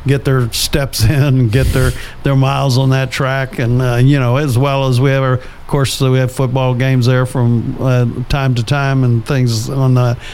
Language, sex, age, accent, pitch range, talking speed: English, male, 50-69, American, 125-145 Hz, 215 wpm